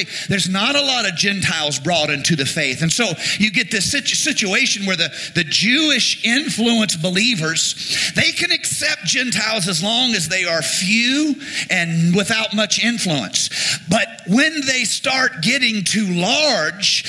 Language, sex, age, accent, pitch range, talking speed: English, male, 50-69, American, 170-225 Hz, 150 wpm